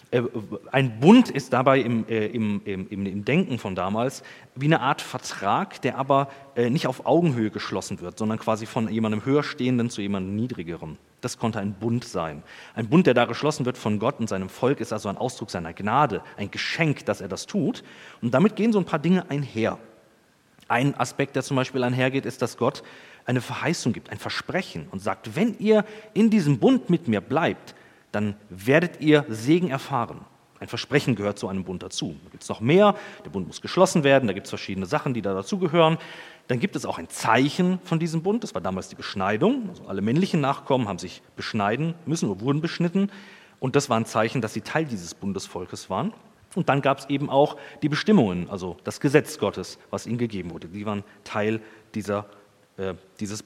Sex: male